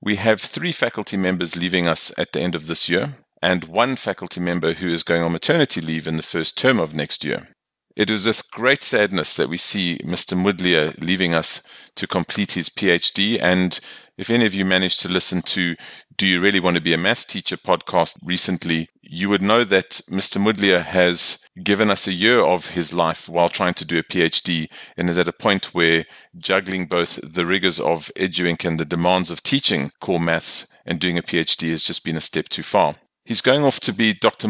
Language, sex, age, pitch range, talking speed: English, male, 40-59, 85-100 Hz, 210 wpm